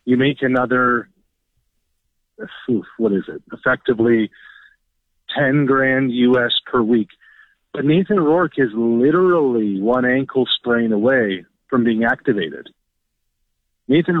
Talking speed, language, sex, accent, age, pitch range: 110 wpm, English, male, American, 40-59, 120-190 Hz